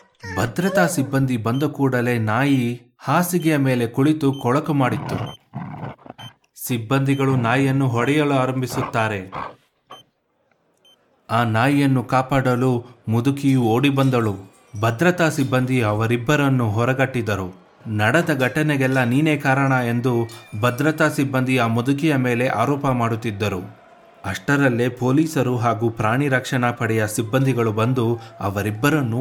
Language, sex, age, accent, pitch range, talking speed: Kannada, male, 30-49, native, 115-140 Hz, 90 wpm